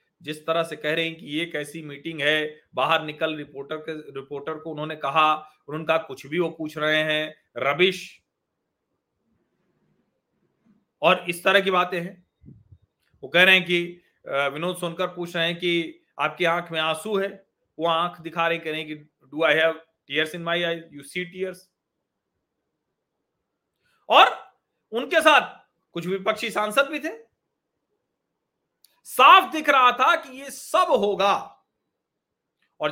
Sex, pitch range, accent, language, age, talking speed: male, 165-215 Hz, native, Hindi, 40-59, 135 wpm